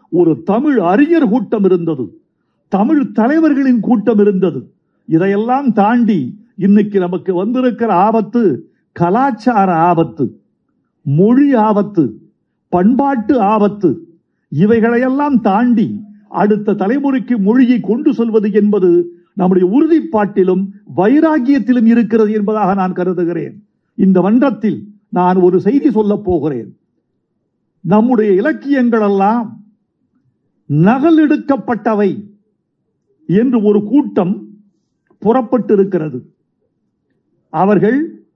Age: 50-69